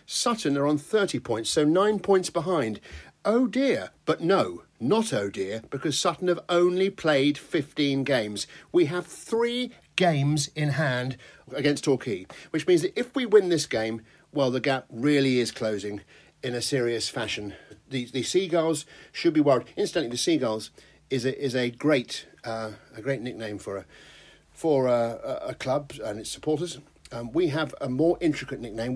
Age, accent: 50-69, British